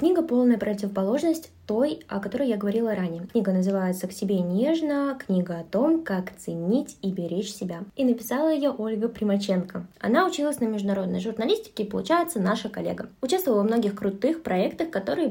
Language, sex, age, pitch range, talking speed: Russian, female, 20-39, 205-265 Hz, 155 wpm